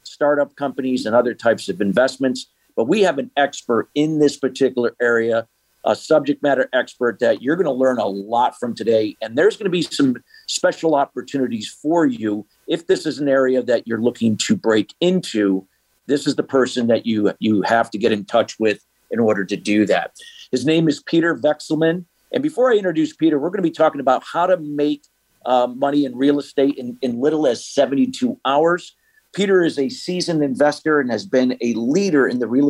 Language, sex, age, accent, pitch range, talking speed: English, male, 50-69, American, 125-160 Hz, 205 wpm